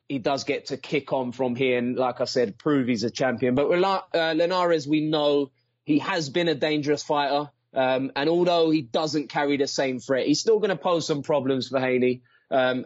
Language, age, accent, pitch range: English, 20-39, British, 130-155 Hz